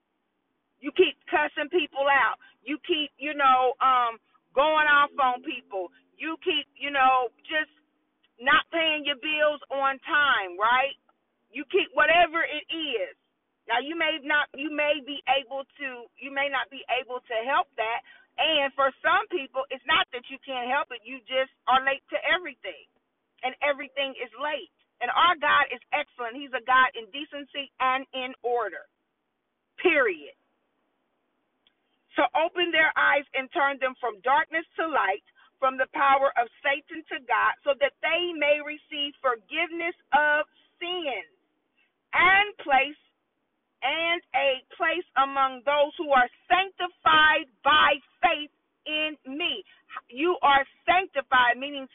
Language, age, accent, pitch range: English, 40-59, American, 265-330 Hz